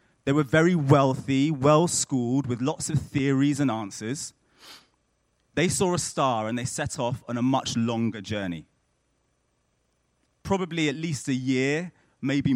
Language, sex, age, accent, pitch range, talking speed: English, male, 30-49, British, 100-155 Hz, 145 wpm